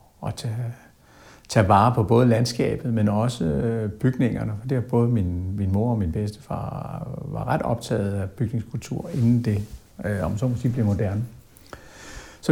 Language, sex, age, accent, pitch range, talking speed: Danish, male, 60-79, native, 105-130 Hz, 170 wpm